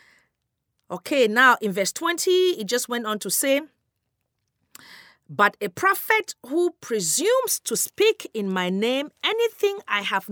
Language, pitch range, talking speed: English, 180-270 Hz, 140 wpm